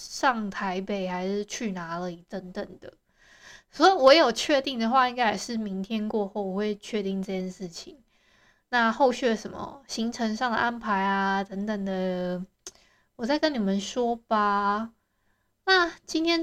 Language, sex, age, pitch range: Chinese, female, 20-39, 205-260 Hz